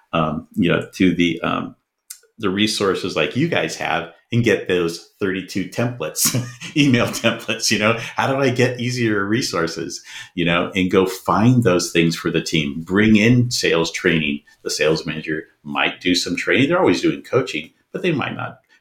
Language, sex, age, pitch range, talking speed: English, male, 50-69, 80-110 Hz, 180 wpm